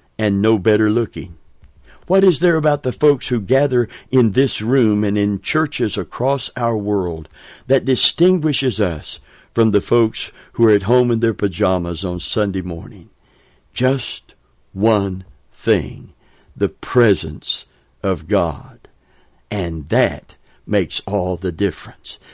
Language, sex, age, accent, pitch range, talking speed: English, male, 60-79, American, 100-130 Hz, 135 wpm